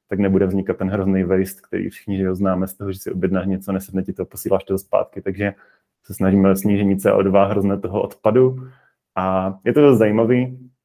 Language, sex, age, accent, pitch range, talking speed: Czech, male, 20-39, native, 95-105 Hz, 200 wpm